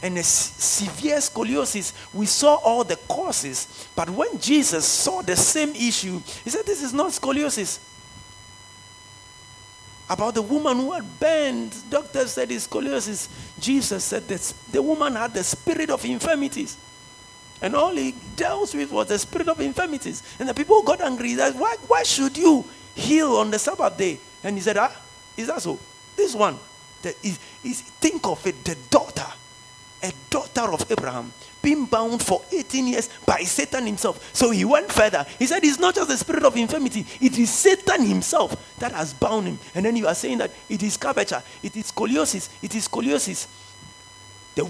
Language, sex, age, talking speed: English, male, 50-69, 180 wpm